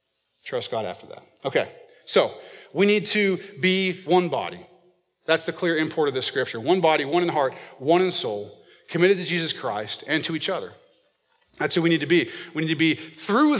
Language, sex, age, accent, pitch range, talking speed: English, male, 40-59, American, 145-185 Hz, 205 wpm